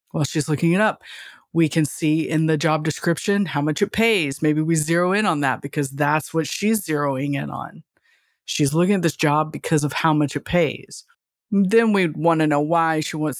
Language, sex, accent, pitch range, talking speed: English, female, American, 155-180 Hz, 220 wpm